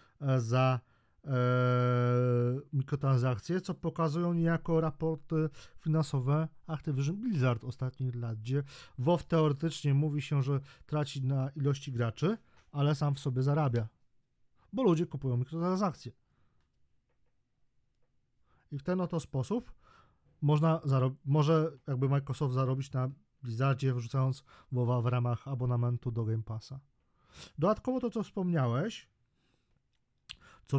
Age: 40-59